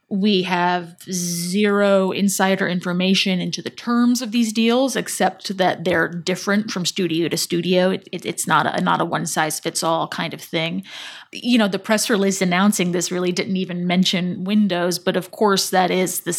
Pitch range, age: 175-195 Hz, 20-39